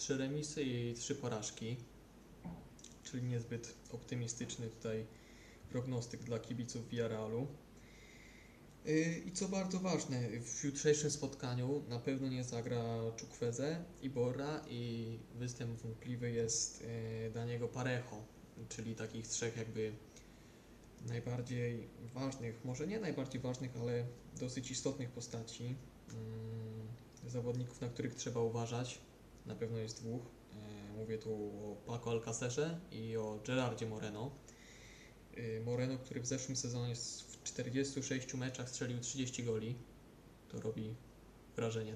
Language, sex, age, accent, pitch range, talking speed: Polish, male, 20-39, native, 115-130 Hz, 115 wpm